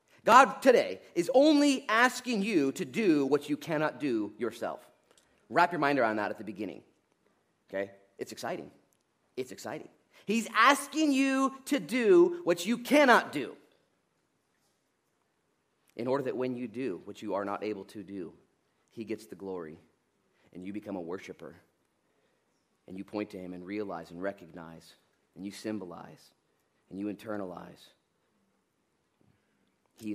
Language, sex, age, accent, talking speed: English, male, 30-49, American, 145 wpm